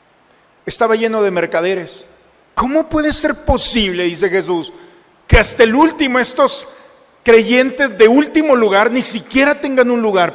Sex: male